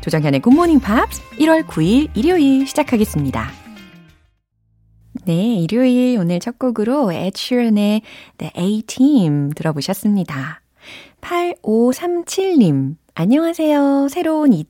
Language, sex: Korean, female